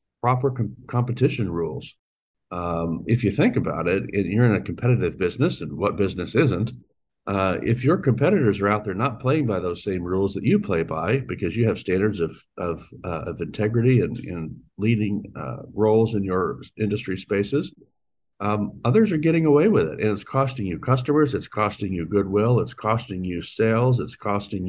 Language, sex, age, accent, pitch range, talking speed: English, male, 50-69, American, 95-120 Hz, 185 wpm